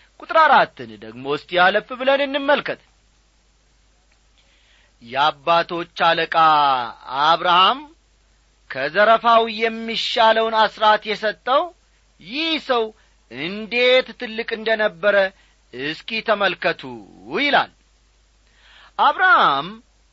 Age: 40-59